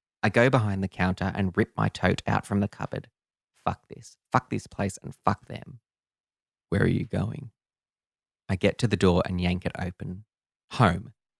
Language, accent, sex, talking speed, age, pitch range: English, Australian, male, 185 wpm, 20-39, 95-105 Hz